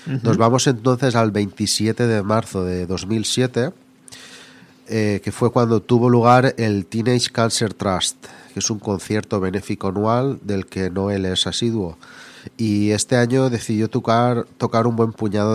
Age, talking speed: 30-49, 150 wpm